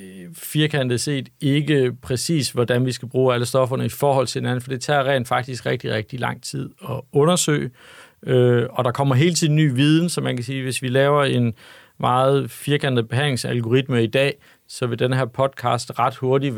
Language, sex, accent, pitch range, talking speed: Danish, male, native, 120-140 Hz, 190 wpm